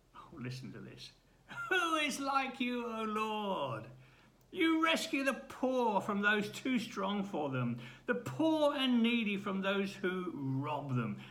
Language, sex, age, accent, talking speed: English, male, 60-79, British, 150 wpm